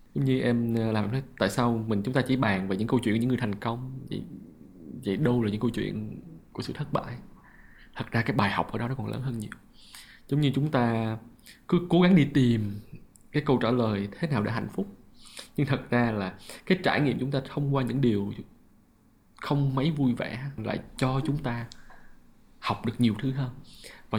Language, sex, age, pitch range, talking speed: Vietnamese, male, 20-39, 115-135 Hz, 220 wpm